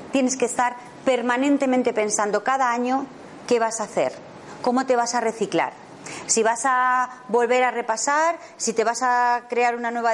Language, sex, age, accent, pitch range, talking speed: Spanish, female, 40-59, Spanish, 225-280 Hz, 170 wpm